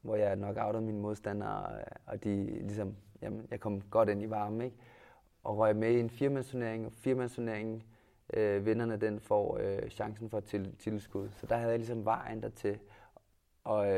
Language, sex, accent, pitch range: Danish, male, native, 105-115 Hz